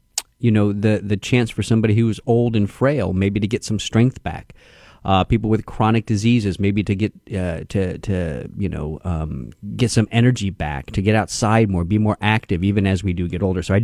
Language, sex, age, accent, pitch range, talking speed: English, male, 40-59, American, 100-125 Hz, 220 wpm